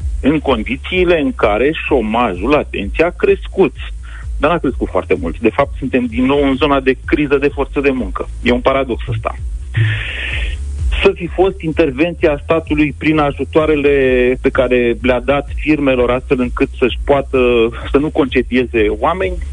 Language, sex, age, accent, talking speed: Romanian, male, 30-49, native, 155 wpm